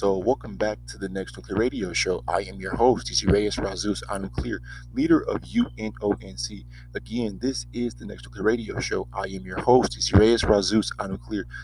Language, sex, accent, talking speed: English, male, American, 185 wpm